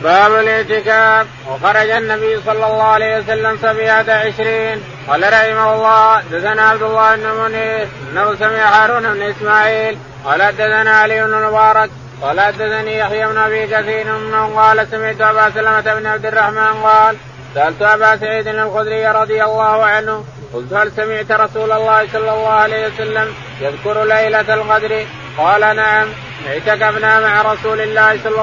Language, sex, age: Arabic, male, 20-39